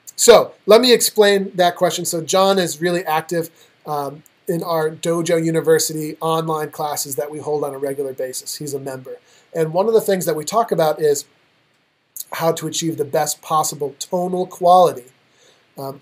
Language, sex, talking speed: English, male, 175 wpm